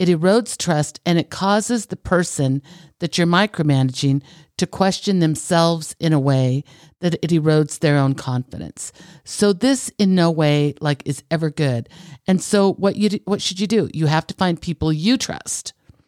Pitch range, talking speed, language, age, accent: 145-175 Hz, 180 wpm, English, 50-69, American